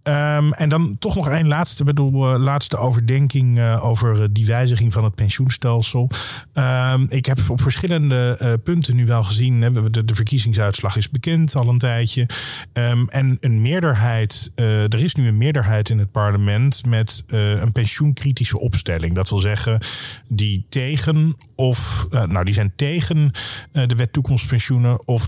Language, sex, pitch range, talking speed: Dutch, male, 105-130 Hz, 170 wpm